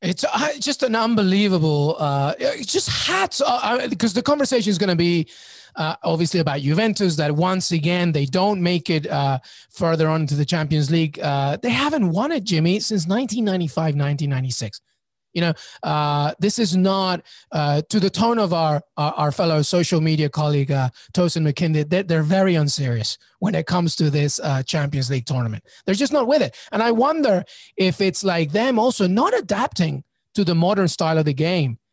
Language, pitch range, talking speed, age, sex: English, 155-225 Hz, 180 wpm, 30-49, male